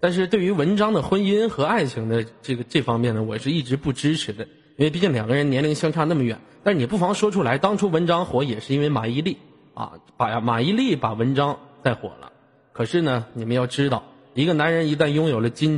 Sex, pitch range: male, 115-175 Hz